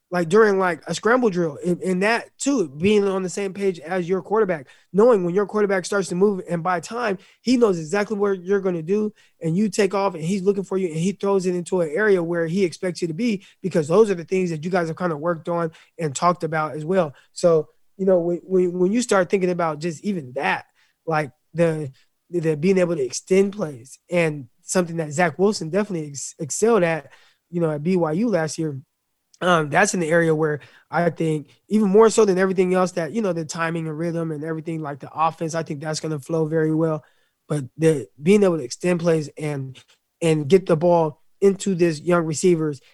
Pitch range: 160-195 Hz